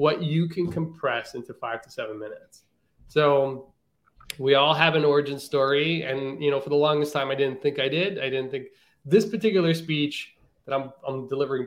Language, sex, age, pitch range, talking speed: English, male, 20-39, 130-165 Hz, 195 wpm